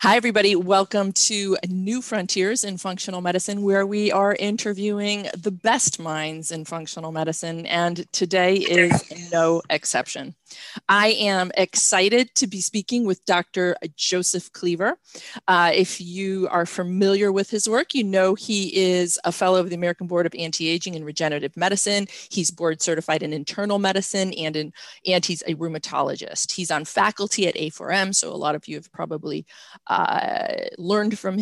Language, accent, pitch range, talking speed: English, American, 170-195 Hz, 160 wpm